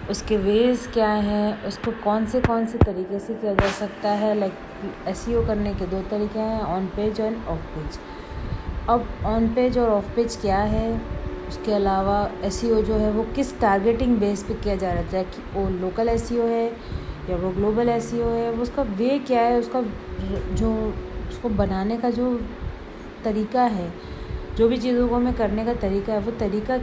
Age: 30-49